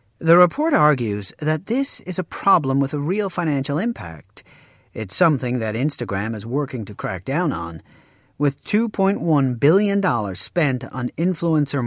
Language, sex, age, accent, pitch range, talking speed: English, male, 40-59, American, 115-165 Hz, 145 wpm